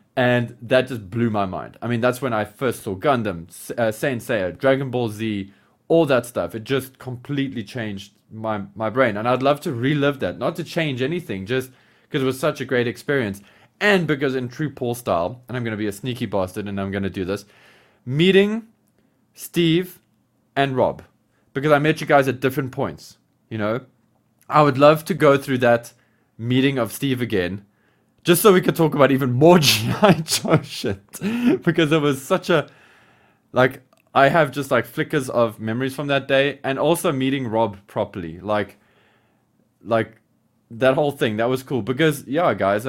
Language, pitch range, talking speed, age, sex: English, 110-140 Hz, 190 wpm, 20-39, male